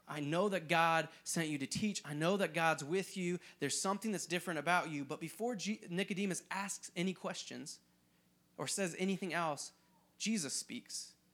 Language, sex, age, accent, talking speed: English, male, 30-49, American, 175 wpm